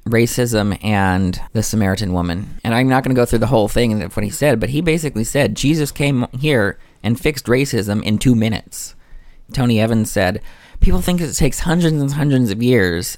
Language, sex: English, male